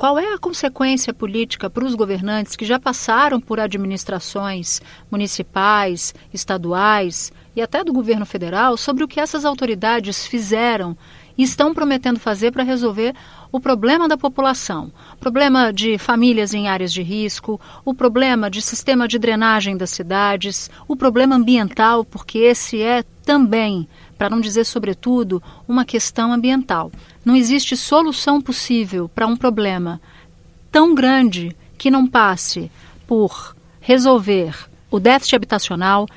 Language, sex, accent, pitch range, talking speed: Portuguese, female, Brazilian, 195-255 Hz, 140 wpm